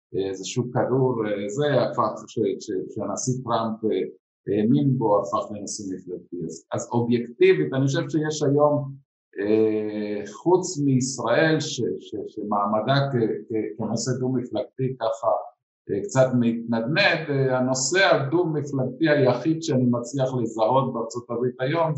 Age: 50-69